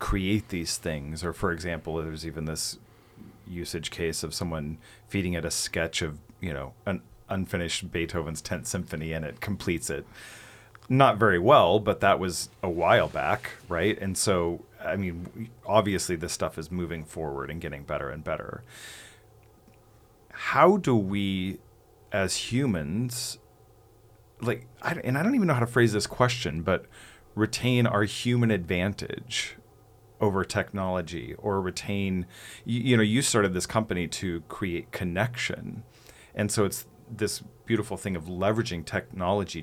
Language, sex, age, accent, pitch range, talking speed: English, male, 40-59, American, 85-110 Hz, 145 wpm